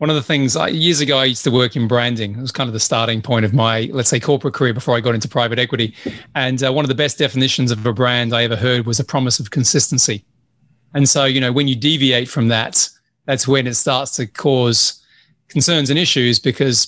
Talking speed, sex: 245 wpm, male